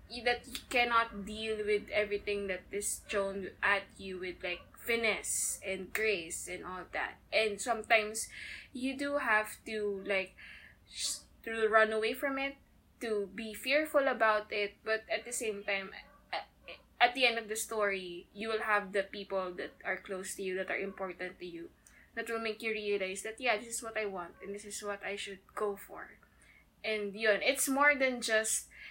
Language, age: English, 20-39